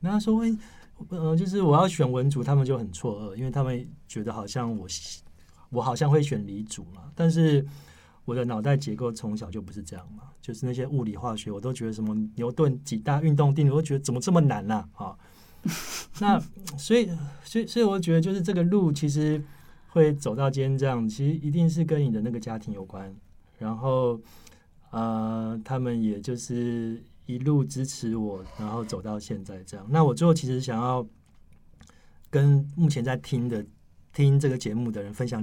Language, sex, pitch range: Chinese, male, 105-145 Hz